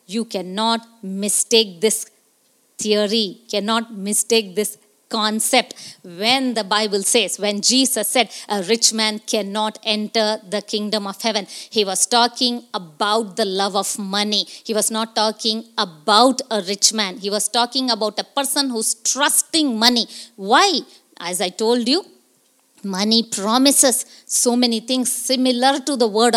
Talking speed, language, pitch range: 145 wpm, English, 205-255 Hz